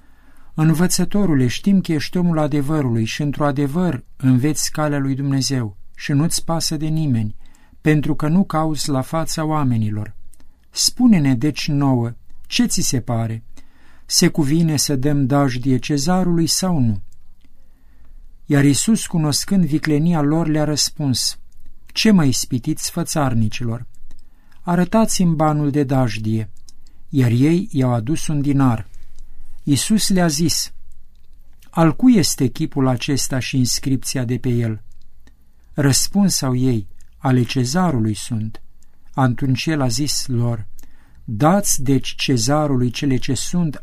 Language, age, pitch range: Romanian, 50-69, 120-160 Hz